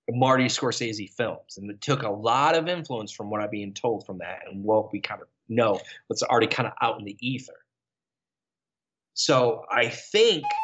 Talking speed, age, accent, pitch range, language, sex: 190 wpm, 20-39, American, 115-145 Hz, English, male